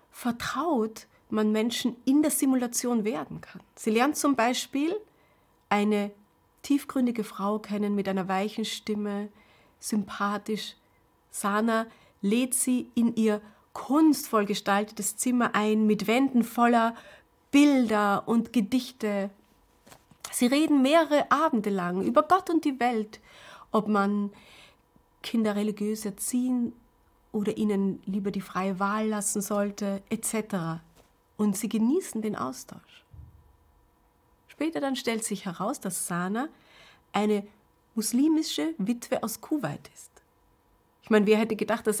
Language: German